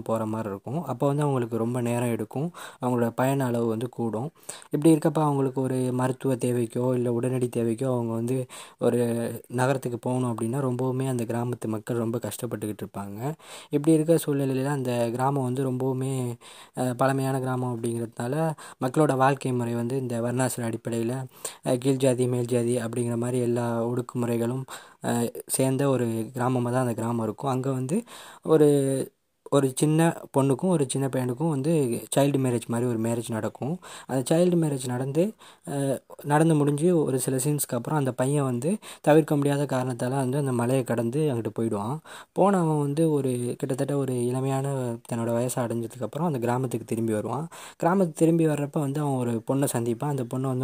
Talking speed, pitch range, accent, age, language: 150 wpm, 120-140 Hz, native, 20-39, Tamil